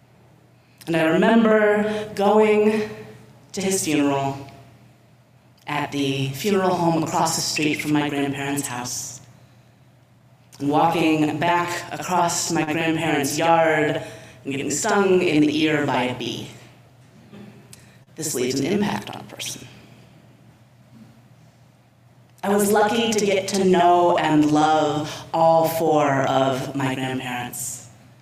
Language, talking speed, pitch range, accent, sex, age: English, 115 wpm, 135-175 Hz, American, female, 30-49